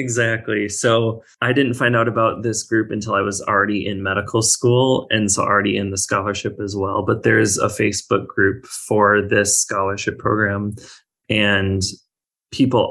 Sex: male